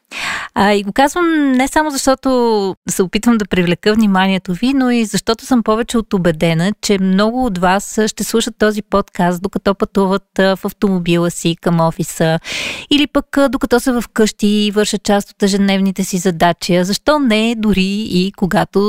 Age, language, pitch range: 20-39, Bulgarian, 185-230 Hz